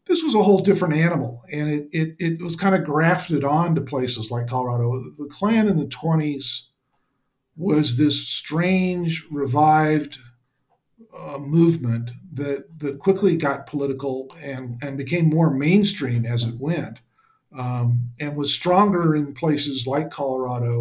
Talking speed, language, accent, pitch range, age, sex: 145 wpm, English, American, 130-170 Hz, 50-69, male